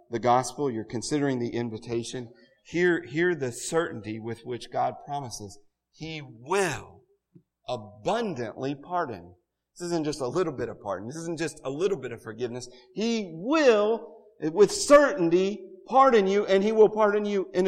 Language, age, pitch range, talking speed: English, 40-59, 110-165 Hz, 155 wpm